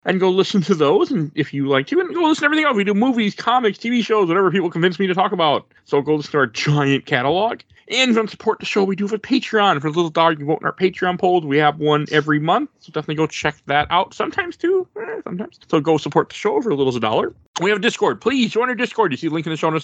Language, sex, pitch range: English, male, 140-200 Hz